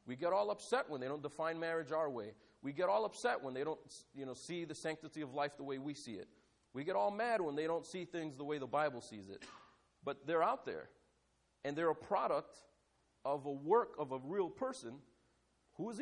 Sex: male